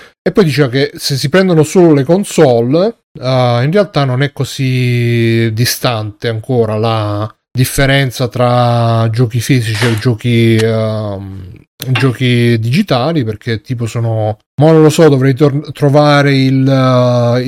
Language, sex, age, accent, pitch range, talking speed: Italian, male, 30-49, native, 115-145 Hz, 135 wpm